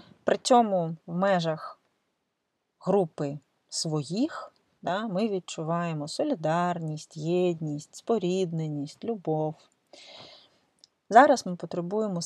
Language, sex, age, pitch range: Ukrainian, female, 30-49, 155-190 Hz